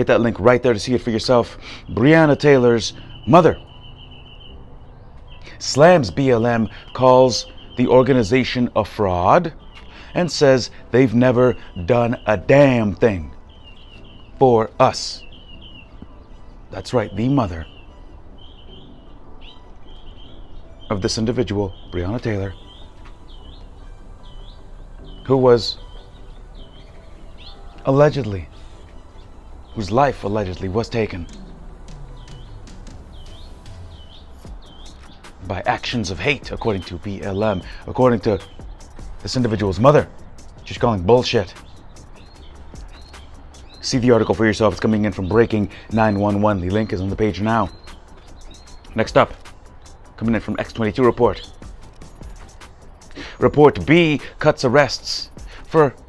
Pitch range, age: 90-120 Hz, 30-49